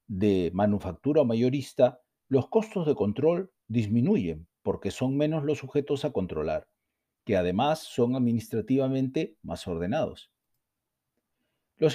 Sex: male